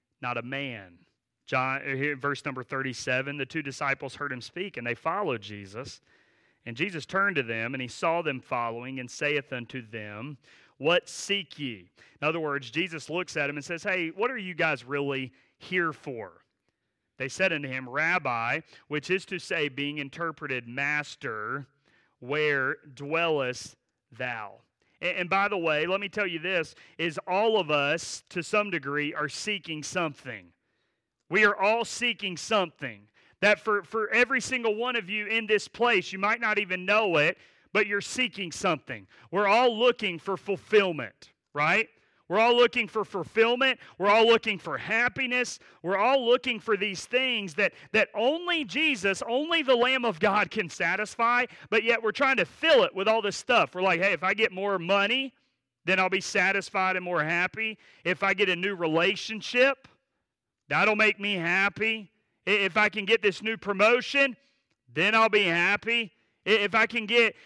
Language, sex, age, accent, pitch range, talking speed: English, male, 40-59, American, 145-220 Hz, 175 wpm